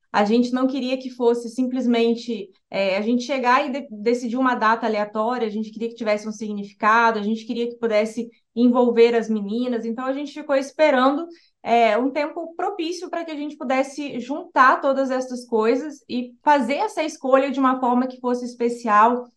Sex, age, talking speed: female, 20-39, 185 wpm